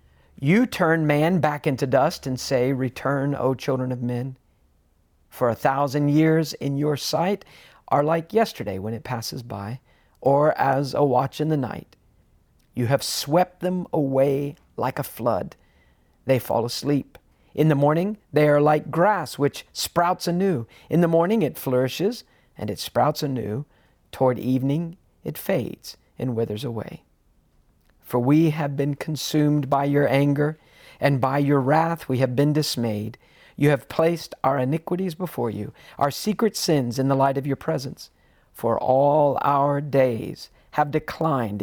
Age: 50-69